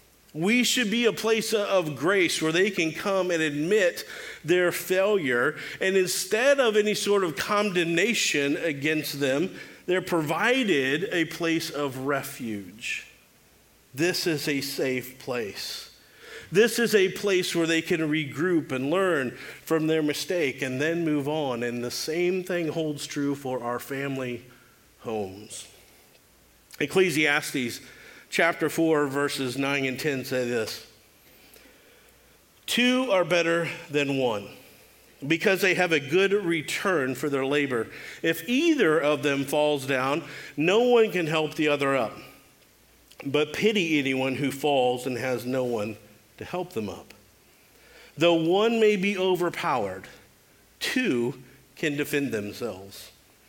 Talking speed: 135 wpm